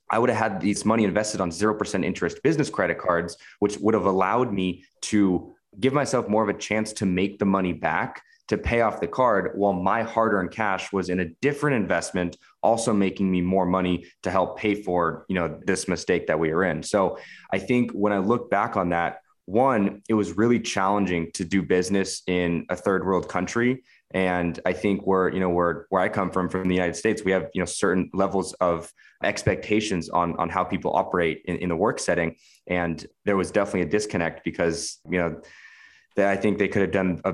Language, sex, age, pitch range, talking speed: English, male, 20-39, 90-105 Hz, 215 wpm